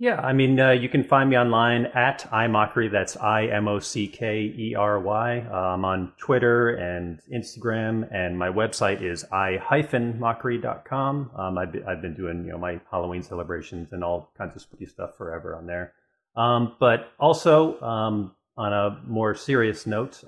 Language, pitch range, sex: English, 95-115 Hz, male